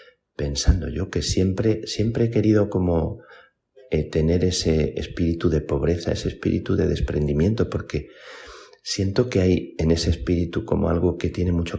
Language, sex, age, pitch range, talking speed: Spanish, male, 40-59, 75-90 Hz, 155 wpm